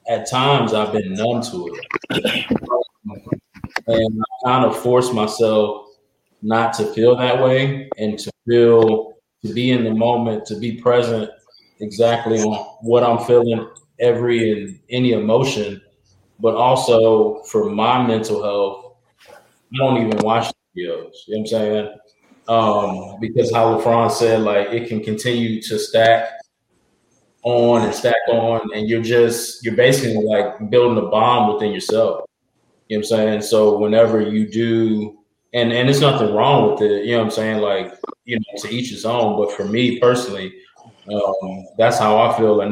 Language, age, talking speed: English, 20-39, 165 wpm